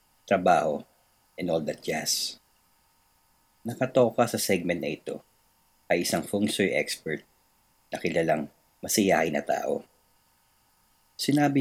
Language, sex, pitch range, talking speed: Filipino, male, 90-115 Hz, 110 wpm